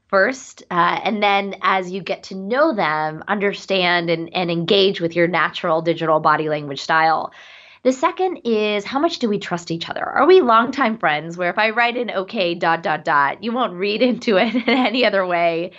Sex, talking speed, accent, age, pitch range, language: female, 200 wpm, American, 20-39, 170-230 Hz, English